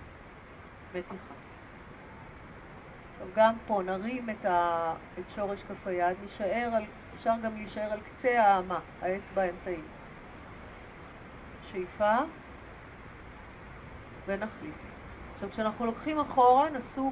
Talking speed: 80 wpm